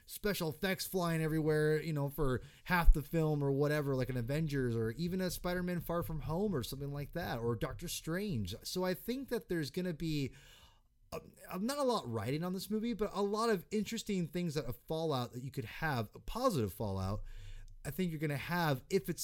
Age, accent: 30-49, American